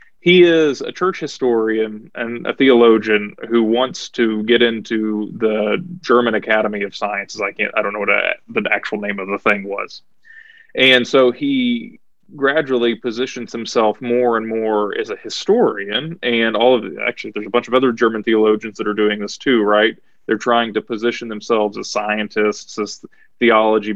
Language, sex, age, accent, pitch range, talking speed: English, male, 20-39, American, 105-125 Hz, 175 wpm